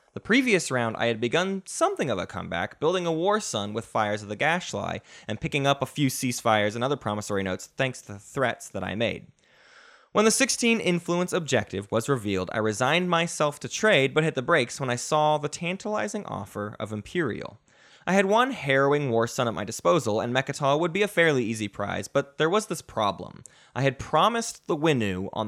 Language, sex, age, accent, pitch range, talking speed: English, male, 20-39, American, 110-175 Hz, 205 wpm